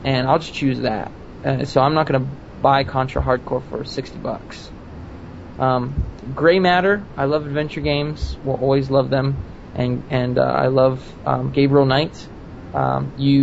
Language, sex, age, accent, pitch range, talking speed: English, male, 20-39, American, 130-145 Hz, 160 wpm